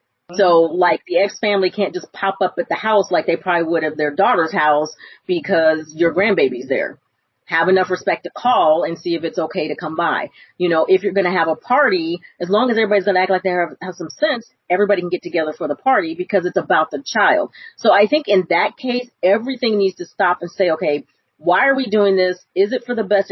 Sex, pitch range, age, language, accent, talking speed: female, 175-230 Hz, 40-59, English, American, 240 wpm